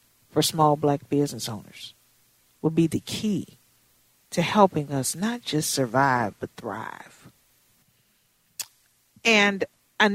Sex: female